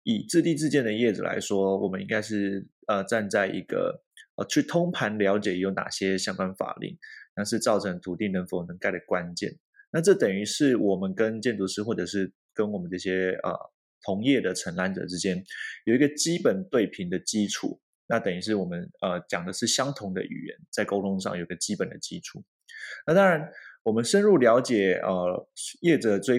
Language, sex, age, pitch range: Chinese, male, 20-39, 95-120 Hz